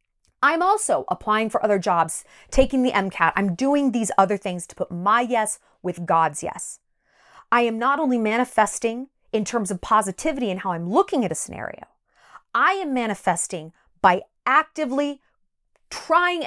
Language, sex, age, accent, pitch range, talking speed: English, female, 30-49, American, 190-265 Hz, 155 wpm